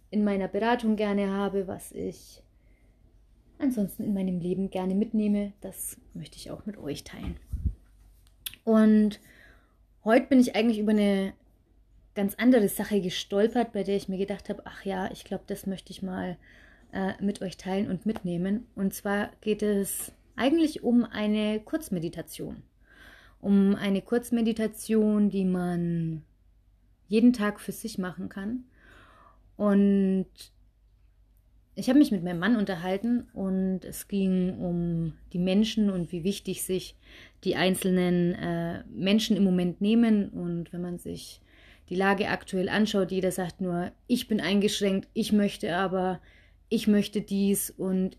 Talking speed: 145 wpm